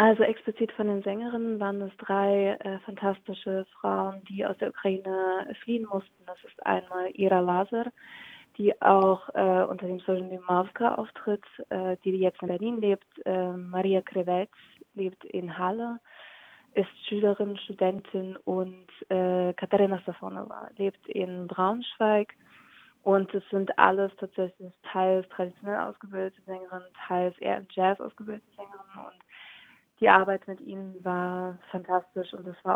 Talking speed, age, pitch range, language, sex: 140 wpm, 20-39, 180-195 Hz, German, female